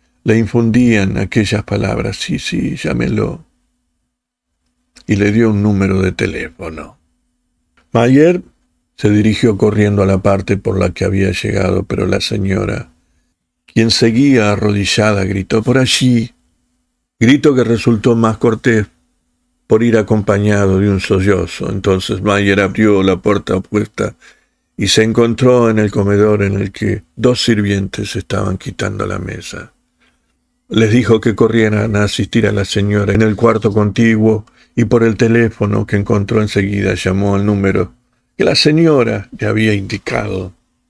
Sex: male